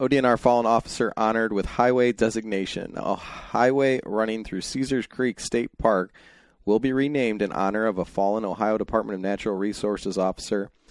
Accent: American